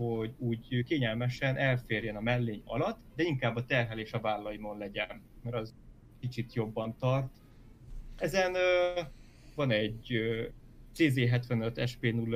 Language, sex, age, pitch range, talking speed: Hungarian, male, 20-39, 115-135 Hz, 125 wpm